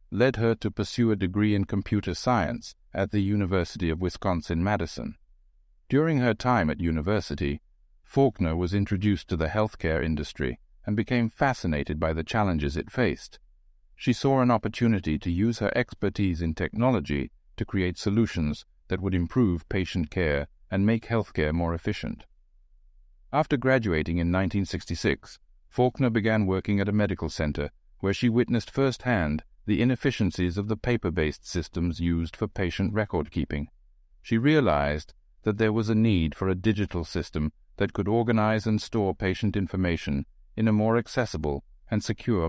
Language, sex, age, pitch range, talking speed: English, male, 60-79, 80-110 Hz, 150 wpm